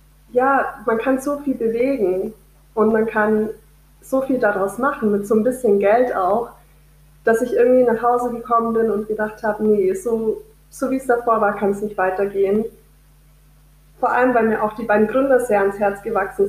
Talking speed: 190 wpm